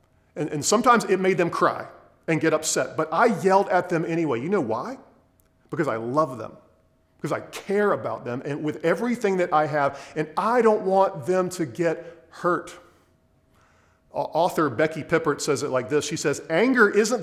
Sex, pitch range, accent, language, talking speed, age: male, 140-185 Hz, American, English, 185 wpm, 40-59